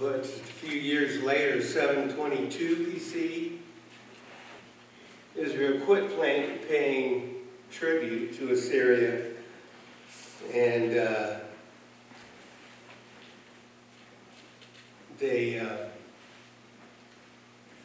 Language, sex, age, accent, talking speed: English, male, 60-79, American, 55 wpm